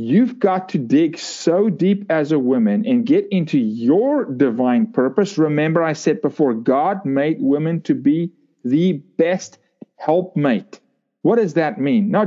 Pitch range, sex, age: 155-225 Hz, male, 40-59